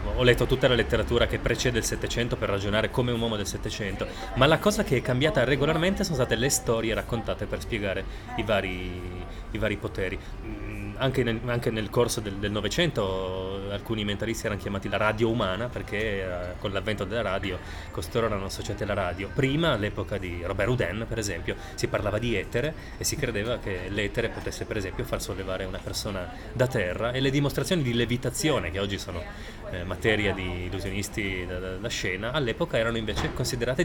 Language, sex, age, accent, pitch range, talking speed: Italian, male, 20-39, native, 95-120 Hz, 185 wpm